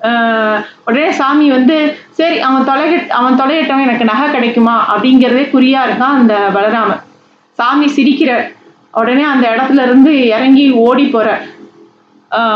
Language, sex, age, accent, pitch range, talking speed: Tamil, female, 30-49, native, 215-270 Hz, 130 wpm